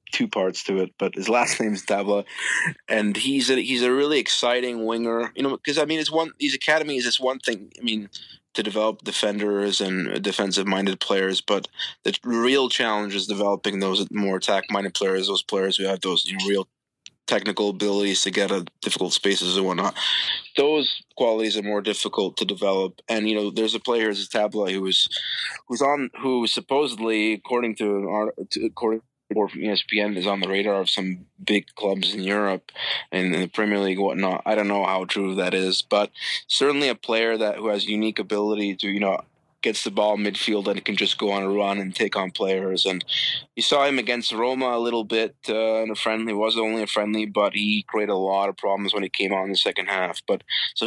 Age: 20-39